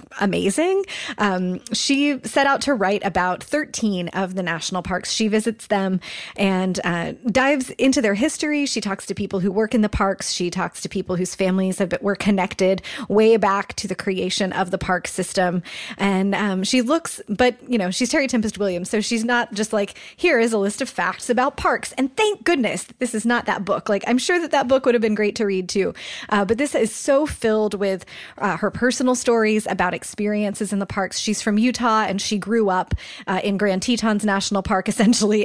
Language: English